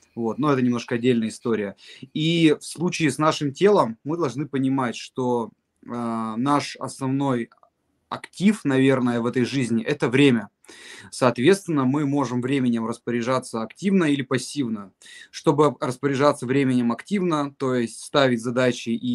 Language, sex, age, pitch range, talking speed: Russian, male, 20-39, 125-155 Hz, 130 wpm